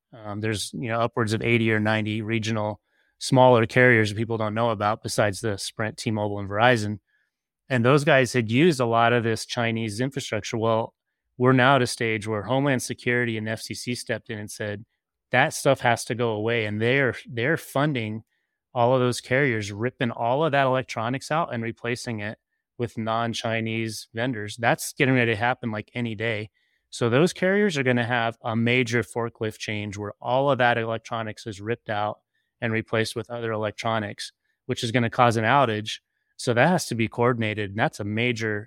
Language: English